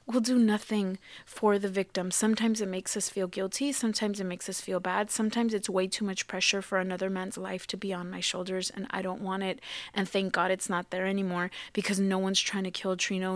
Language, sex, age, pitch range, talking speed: English, female, 20-39, 190-225 Hz, 235 wpm